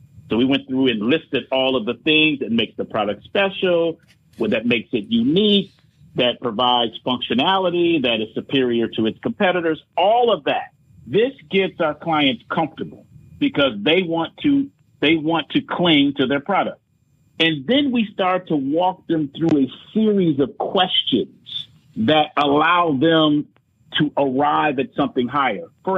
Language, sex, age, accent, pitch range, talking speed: English, male, 50-69, American, 135-210 Hz, 160 wpm